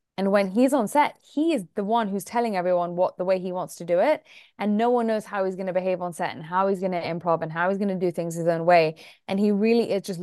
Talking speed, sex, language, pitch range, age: 305 wpm, female, English, 175-205 Hz, 20-39